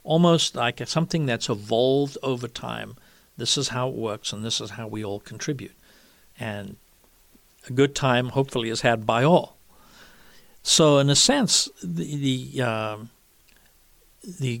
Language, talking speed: English, 145 wpm